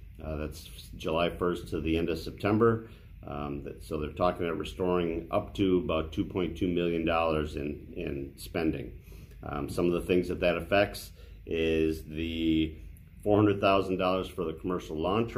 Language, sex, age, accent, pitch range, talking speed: English, male, 40-59, American, 80-95 Hz, 150 wpm